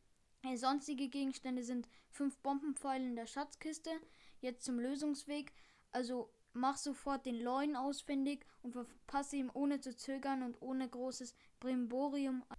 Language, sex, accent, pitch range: German, female, German, 250-285 Hz